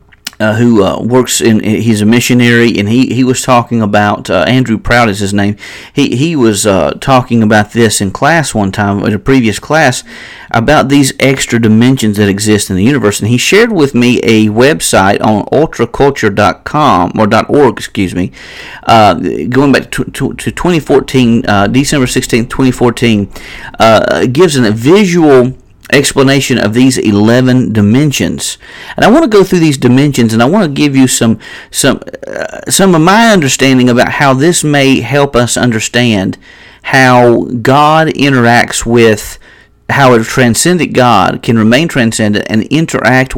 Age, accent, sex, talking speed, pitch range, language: 40-59, American, male, 165 wpm, 110-135 Hz, English